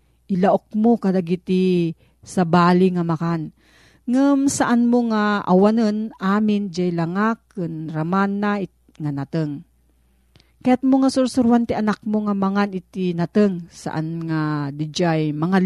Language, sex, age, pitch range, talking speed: Filipino, female, 40-59, 165-225 Hz, 140 wpm